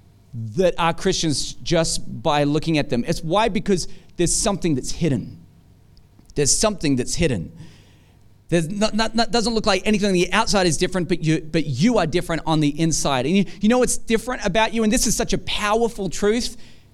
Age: 30-49